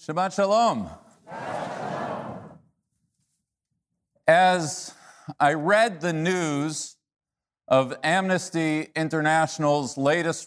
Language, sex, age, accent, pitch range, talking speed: English, male, 40-59, American, 140-185 Hz, 65 wpm